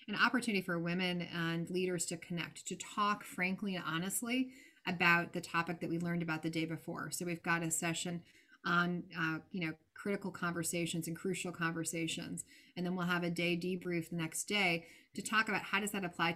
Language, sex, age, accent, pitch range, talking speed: English, female, 30-49, American, 165-185 Hz, 200 wpm